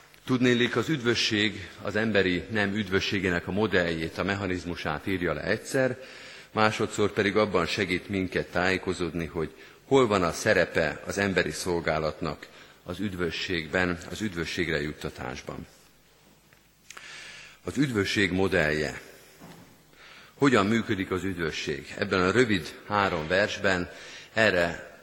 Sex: male